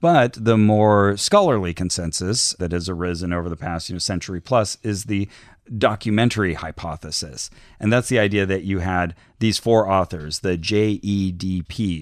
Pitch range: 85-110 Hz